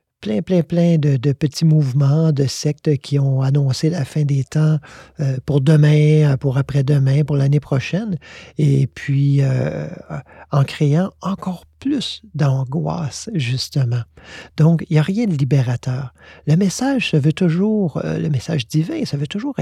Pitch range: 135-160 Hz